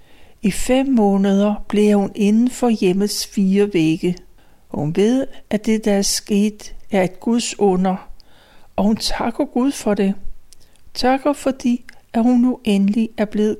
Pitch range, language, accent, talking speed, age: 195-240 Hz, Danish, native, 155 wpm, 60-79